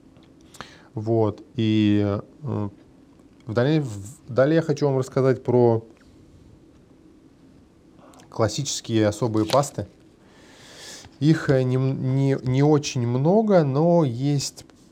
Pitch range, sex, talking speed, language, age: 110-140 Hz, male, 95 wpm, Russian, 20-39